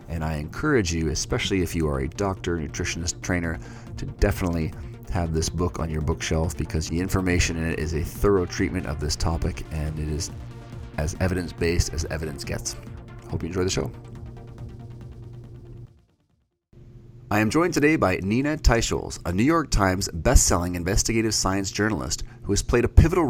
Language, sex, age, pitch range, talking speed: English, male, 30-49, 90-120 Hz, 165 wpm